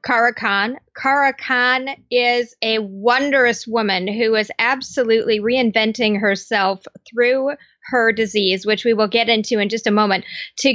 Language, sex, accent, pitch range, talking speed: English, female, American, 215-260 Hz, 145 wpm